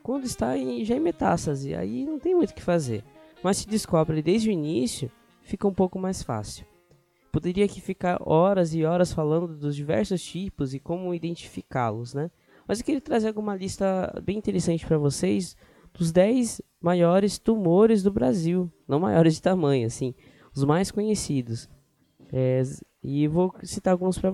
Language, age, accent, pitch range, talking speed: Portuguese, 10-29, Brazilian, 130-185 Hz, 170 wpm